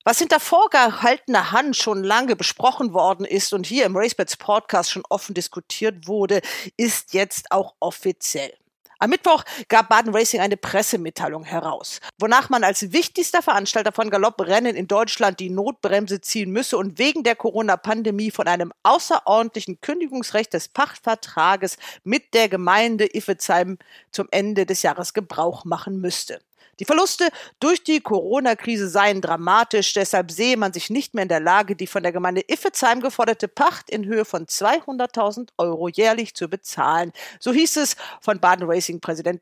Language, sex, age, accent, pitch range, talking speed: German, female, 50-69, German, 190-245 Hz, 155 wpm